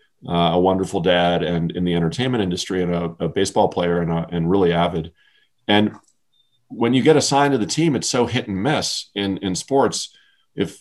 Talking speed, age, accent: 200 wpm, 40-59, American